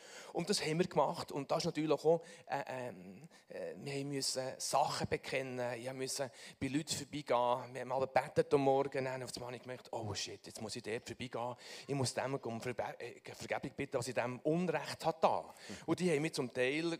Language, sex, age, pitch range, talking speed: German, male, 40-59, 130-175 Hz, 210 wpm